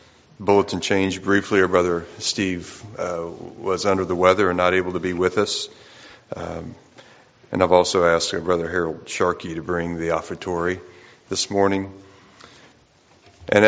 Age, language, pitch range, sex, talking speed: 40-59, English, 85-100 Hz, male, 150 wpm